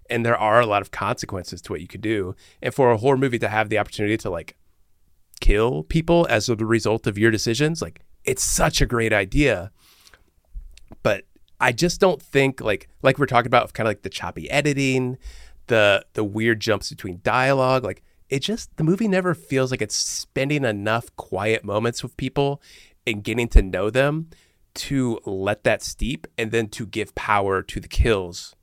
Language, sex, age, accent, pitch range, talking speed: English, male, 30-49, American, 100-135 Hz, 195 wpm